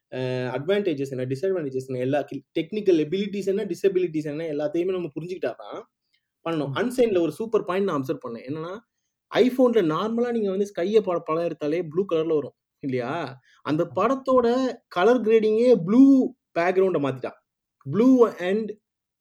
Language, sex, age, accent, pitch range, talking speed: Tamil, male, 20-39, native, 160-235 Hz, 140 wpm